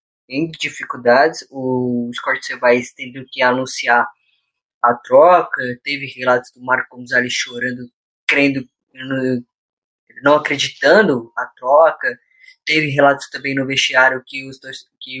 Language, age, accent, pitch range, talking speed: Portuguese, 10-29, Brazilian, 130-170 Hz, 120 wpm